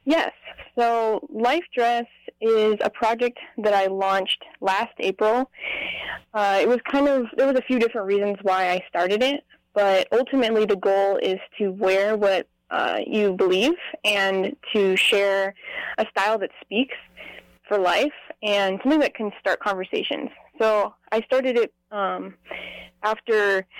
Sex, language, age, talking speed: female, English, 10-29, 150 wpm